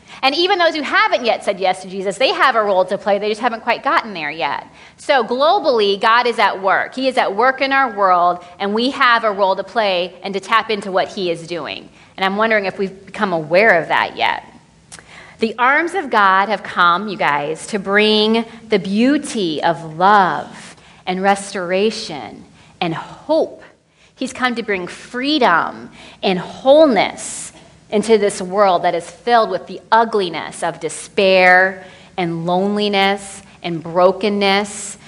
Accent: American